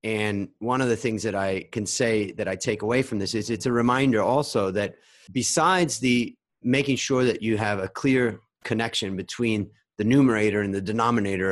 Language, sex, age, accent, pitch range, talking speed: English, male, 30-49, American, 105-130 Hz, 195 wpm